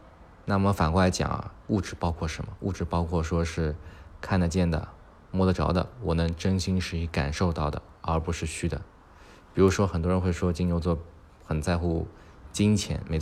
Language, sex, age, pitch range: Chinese, male, 20-39, 80-95 Hz